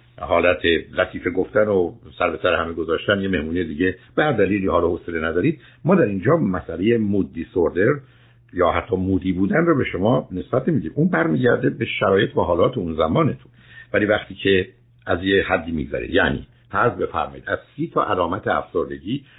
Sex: male